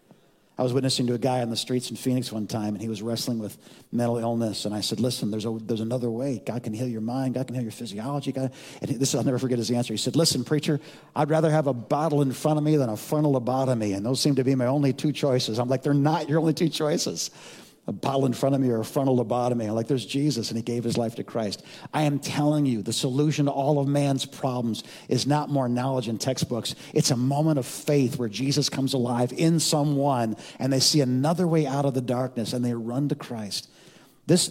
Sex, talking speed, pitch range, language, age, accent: male, 250 wpm, 125-150 Hz, English, 50-69, American